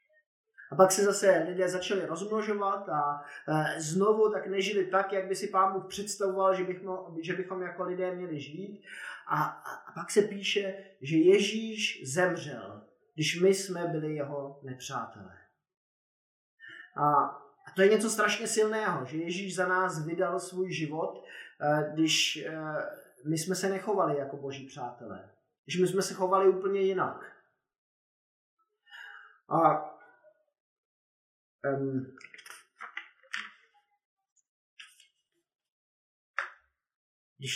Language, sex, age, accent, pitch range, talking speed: Czech, male, 30-49, native, 160-205 Hz, 110 wpm